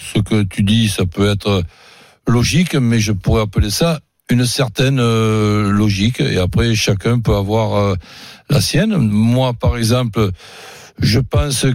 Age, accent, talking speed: 60-79, French, 155 wpm